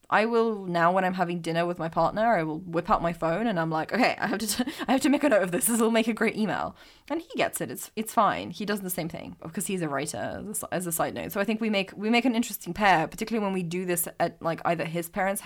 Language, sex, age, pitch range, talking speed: English, female, 20-39, 170-230 Hz, 310 wpm